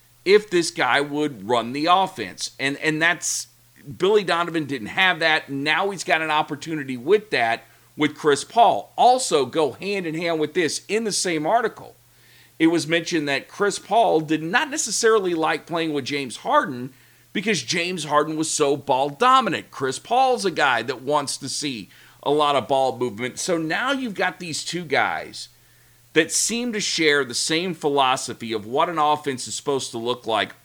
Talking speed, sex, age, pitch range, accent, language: 175 wpm, male, 40-59, 135-175 Hz, American, English